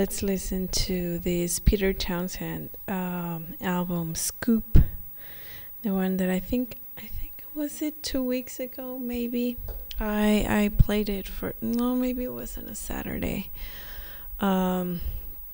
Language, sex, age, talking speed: English, female, 20-39, 130 wpm